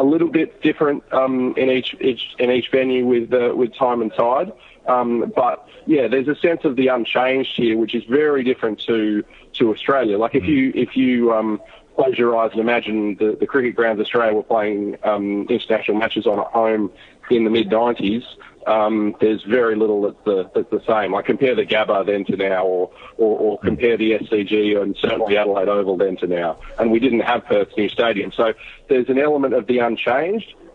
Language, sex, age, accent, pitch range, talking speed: English, male, 30-49, Australian, 105-125 Hz, 200 wpm